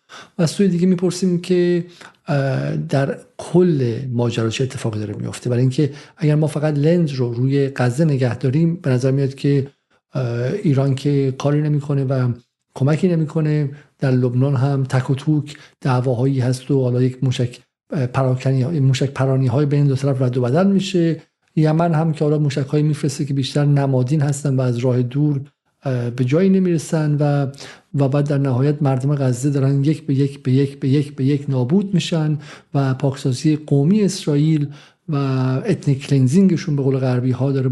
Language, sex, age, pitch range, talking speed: Persian, male, 50-69, 130-150 Hz, 165 wpm